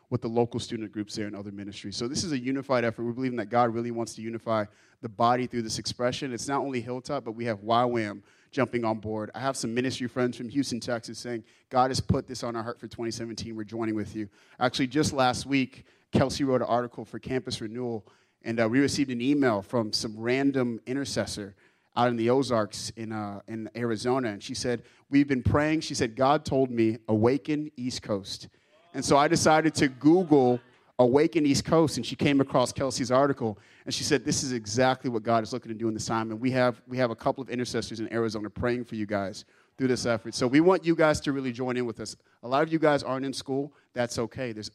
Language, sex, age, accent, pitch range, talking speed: English, male, 30-49, American, 115-135 Hz, 235 wpm